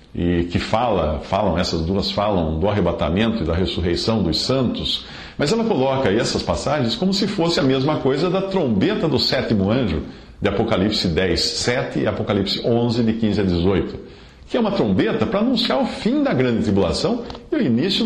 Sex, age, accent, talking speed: male, 50-69, Brazilian, 185 wpm